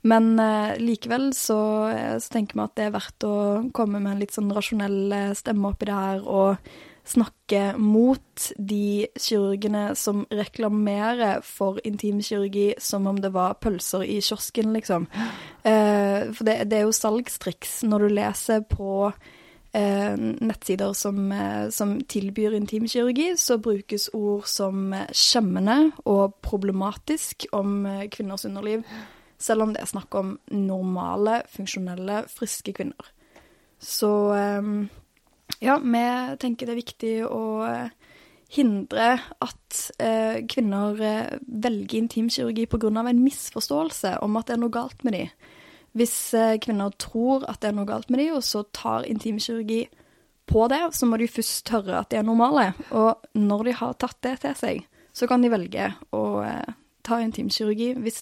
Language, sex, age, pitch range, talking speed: English, female, 20-39, 200-235 Hz, 155 wpm